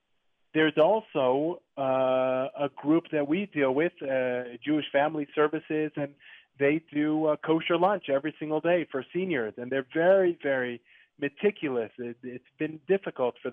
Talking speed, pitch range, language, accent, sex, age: 140 wpm, 125-150 Hz, English, American, male, 30-49